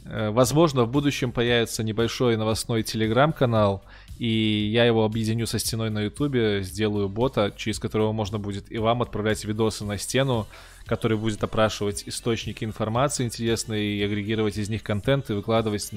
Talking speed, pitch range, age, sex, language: 150 wpm, 105-125 Hz, 20-39, male, Russian